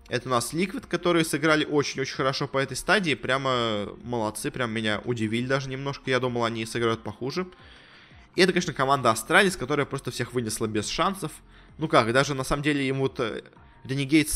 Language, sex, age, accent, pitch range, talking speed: Russian, male, 20-39, native, 120-155 Hz, 180 wpm